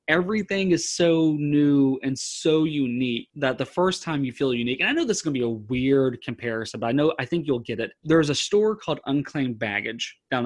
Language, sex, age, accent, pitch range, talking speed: English, male, 20-39, American, 120-160 Hz, 230 wpm